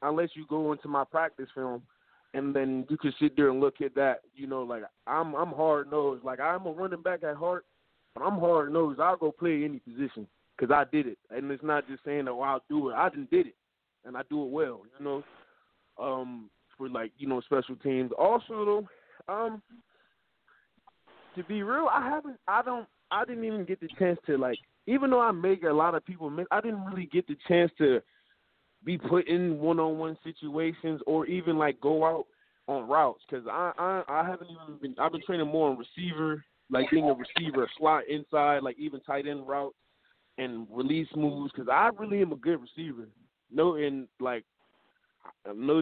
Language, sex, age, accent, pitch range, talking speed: English, male, 20-39, American, 135-175 Hz, 200 wpm